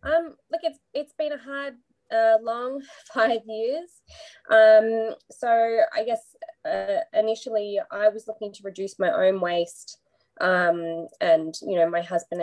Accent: Australian